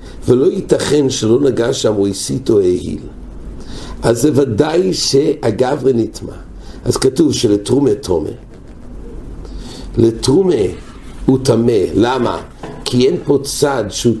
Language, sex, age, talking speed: English, male, 60-79, 70 wpm